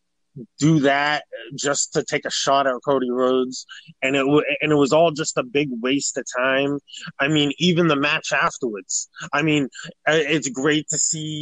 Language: English